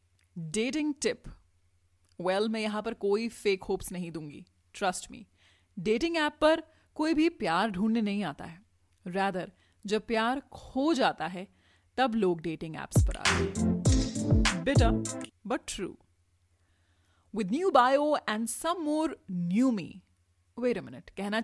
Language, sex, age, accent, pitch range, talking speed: Hindi, female, 30-49, native, 155-255 Hz, 135 wpm